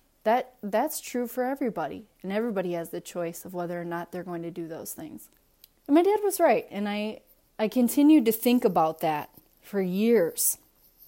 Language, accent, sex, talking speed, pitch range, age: English, American, female, 190 wpm, 175-215 Hz, 20-39